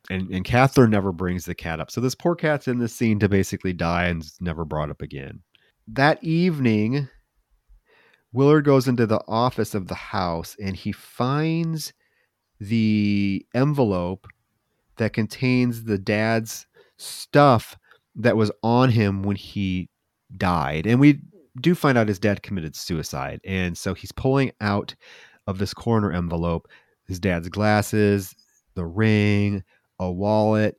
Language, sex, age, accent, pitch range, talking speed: English, male, 30-49, American, 95-125 Hz, 145 wpm